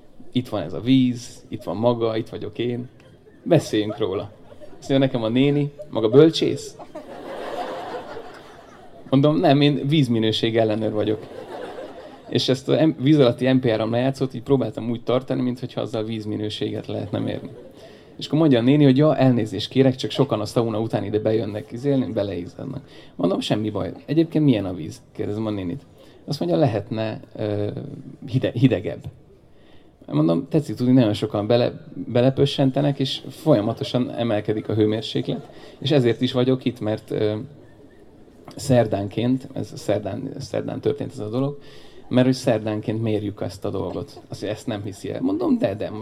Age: 30-49